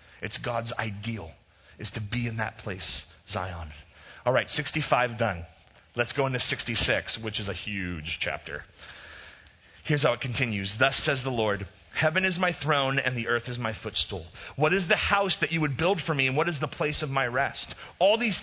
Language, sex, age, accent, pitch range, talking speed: English, male, 30-49, American, 115-170 Hz, 200 wpm